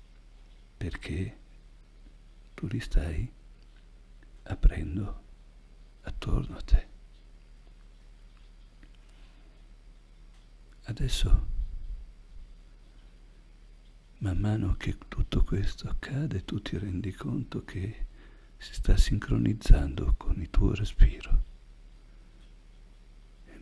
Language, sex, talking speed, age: Italian, male, 70 wpm, 60-79